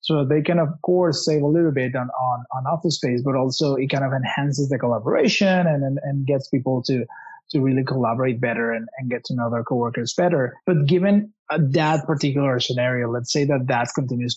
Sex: male